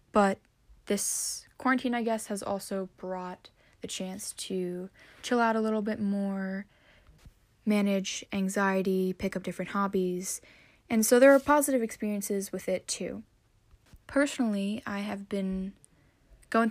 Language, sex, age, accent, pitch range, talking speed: English, female, 10-29, American, 190-225 Hz, 135 wpm